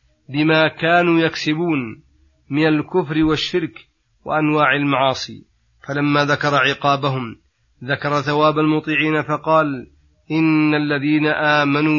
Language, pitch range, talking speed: Arabic, 140-155 Hz, 90 wpm